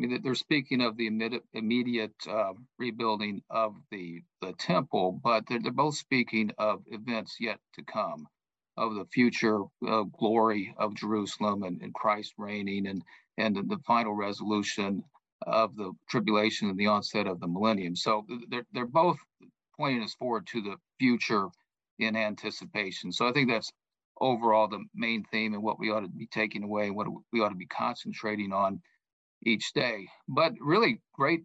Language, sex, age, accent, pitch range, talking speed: English, male, 50-69, American, 105-120 Hz, 170 wpm